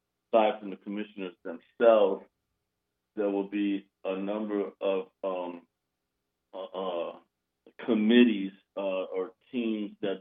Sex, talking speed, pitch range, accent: male, 105 wpm, 90-110 Hz, American